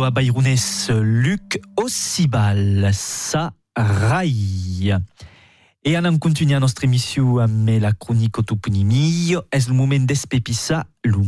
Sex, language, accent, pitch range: male, French, French, 130-170 Hz